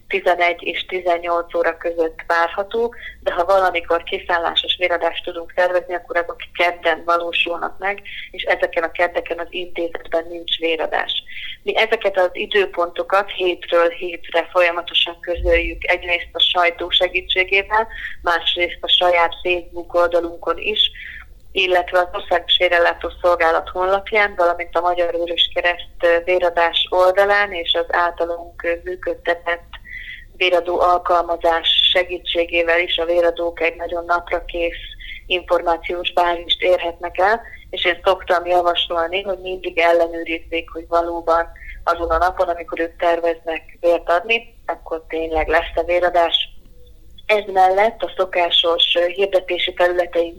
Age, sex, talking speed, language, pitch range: 30-49, female, 120 wpm, Hungarian, 170-180 Hz